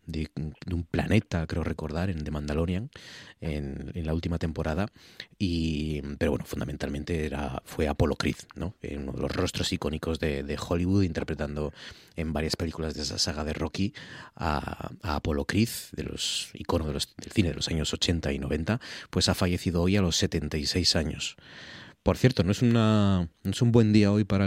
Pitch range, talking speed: 80-100 Hz, 185 wpm